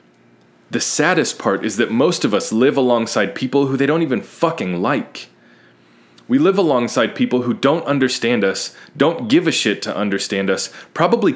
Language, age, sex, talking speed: English, 20-39, male, 175 wpm